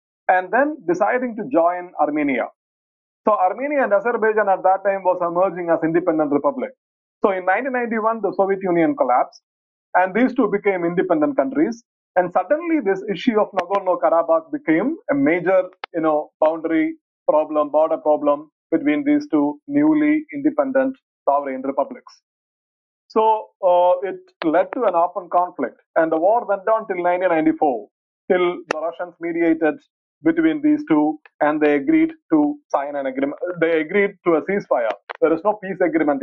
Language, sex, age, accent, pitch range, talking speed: English, male, 30-49, Indian, 160-245 Hz, 150 wpm